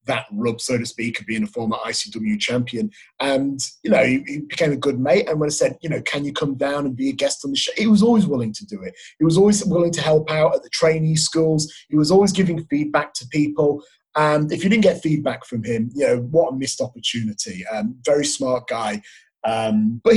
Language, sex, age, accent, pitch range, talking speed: English, male, 30-49, British, 125-170 Hz, 240 wpm